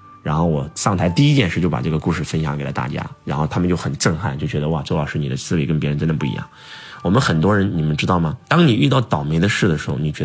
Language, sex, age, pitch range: Chinese, male, 20-39, 80-125 Hz